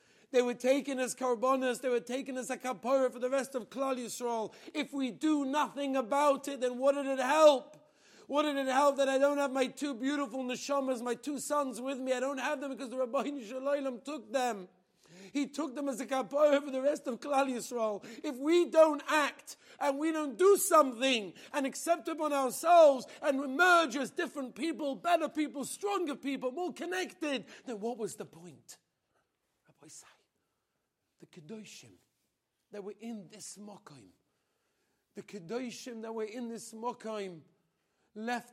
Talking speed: 175 wpm